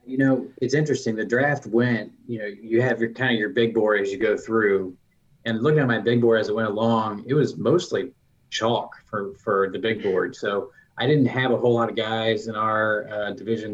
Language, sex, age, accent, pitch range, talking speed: English, male, 20-39, American, 100-120 Hz, 230 wpm